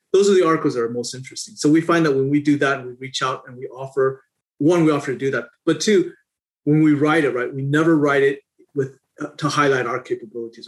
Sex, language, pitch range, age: male, English, 135-170 Hz, 30-49